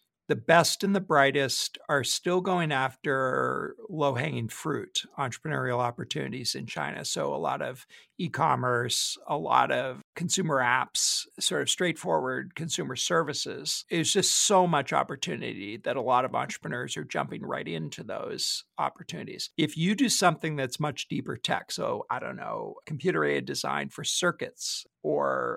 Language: English